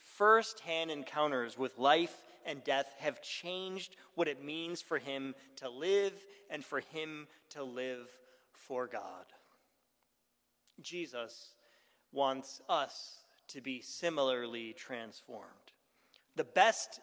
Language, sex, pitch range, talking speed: English, male, 140-195 Hz, 110 wpm